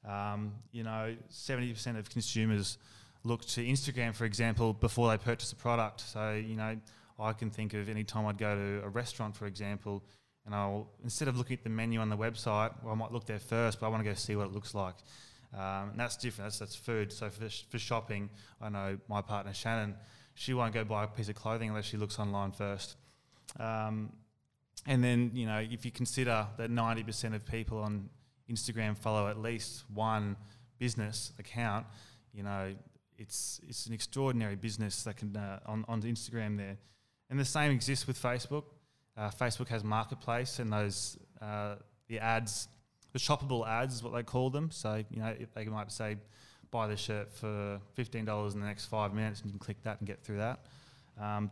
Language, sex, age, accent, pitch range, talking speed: English, male, 20-39, Australian, 105-120 Hz, 205 wpm